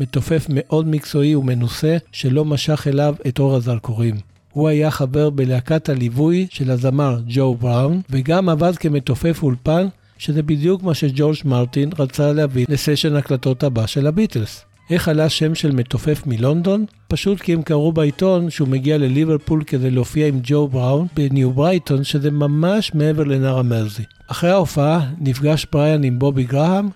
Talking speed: 150 wpm